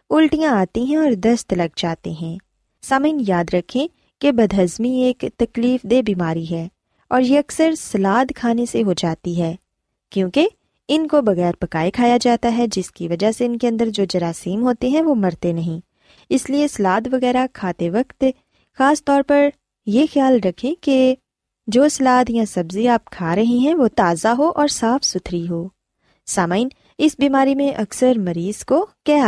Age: 20-39